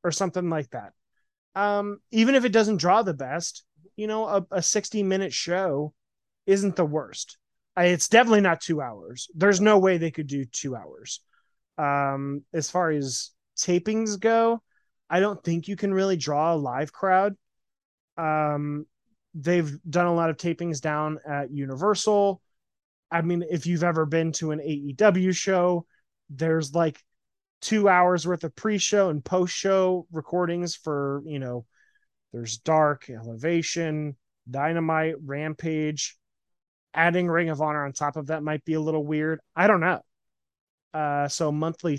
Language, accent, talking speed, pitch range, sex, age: English, American, 155 wpm, 145-180 Hz, male, 20-39